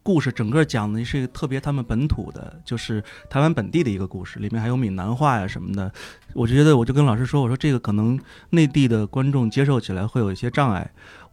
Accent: native